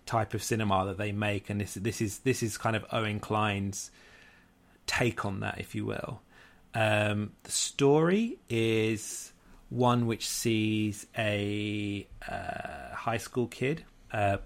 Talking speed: 145 wpm